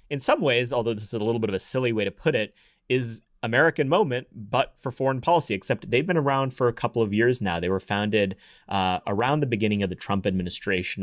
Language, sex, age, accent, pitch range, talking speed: English, male, 30-49, American, 90-110 Hz, 240 wpm